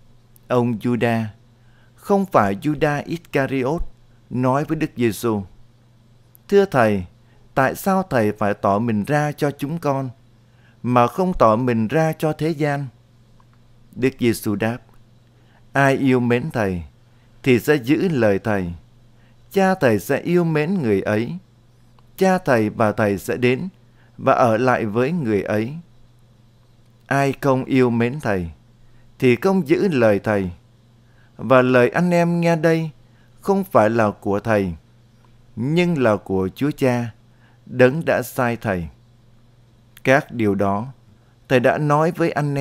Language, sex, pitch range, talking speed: Vietnamese, male, 115-140 Hz, 140 wpm